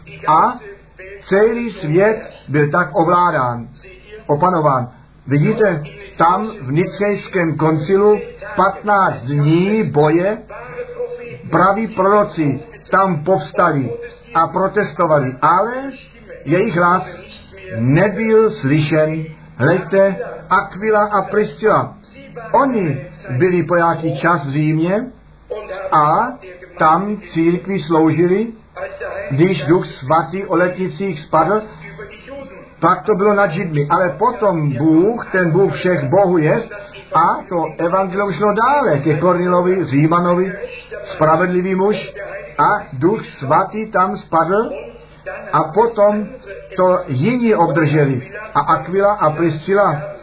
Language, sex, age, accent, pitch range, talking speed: Czech, male, 50-69, native, 160-205 Hz, 100 wpm